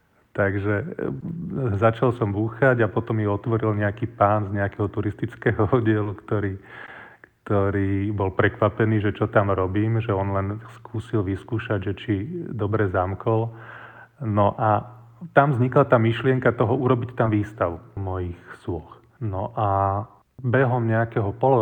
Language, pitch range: Slovak, 100-115 Hz